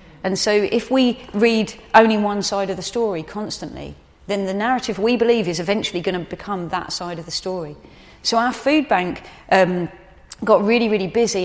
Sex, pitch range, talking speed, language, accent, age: female, 180-215 Hz, 190 wpm, English, British, 30-49